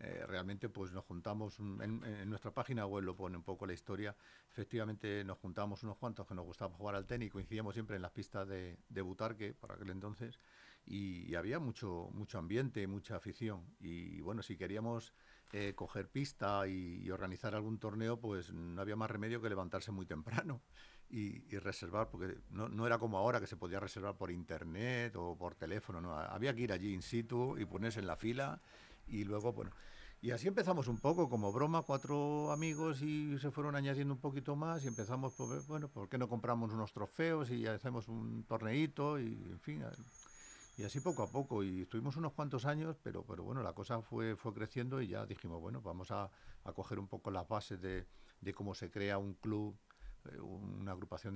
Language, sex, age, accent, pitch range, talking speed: Spanish, male, 50-69, Spanish, 95-120 Hz, 200 wpm